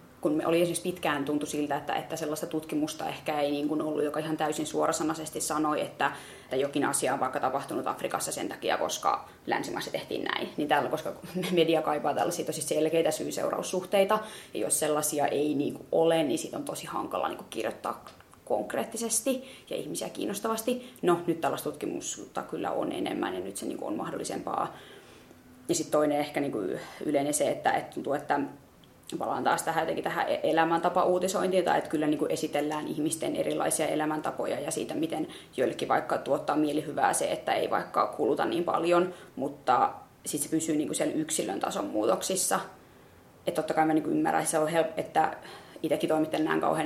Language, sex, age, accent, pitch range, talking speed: Finnish, female, 20-39, native, 150-170 Hz, 170 wpm